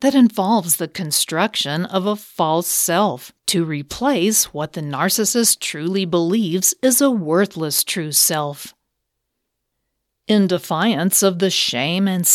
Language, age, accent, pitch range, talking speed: English, 50-69, American, 160-215 Hz, 125 wpm